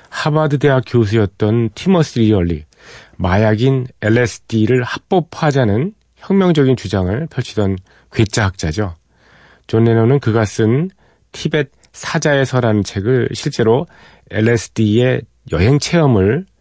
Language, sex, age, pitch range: Korean, male, 40-59, 95-125 Hz